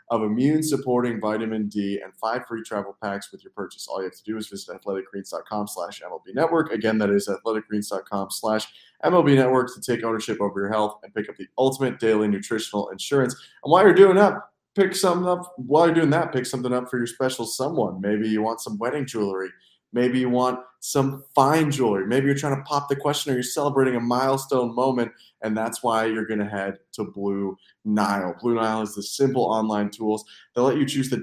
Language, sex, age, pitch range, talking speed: English, male, 20-39, 105-140 Hz, 215 wpm